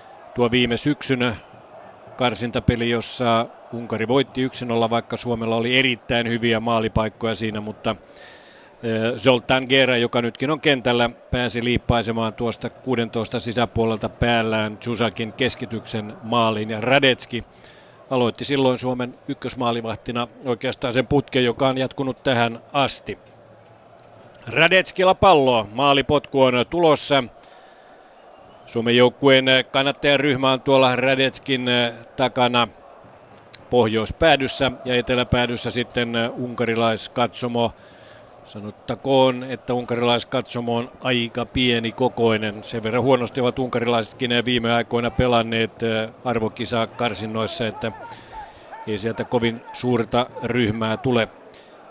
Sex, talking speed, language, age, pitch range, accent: male, 100 wpm, Finnish, 40-59, 115-130 Hz, native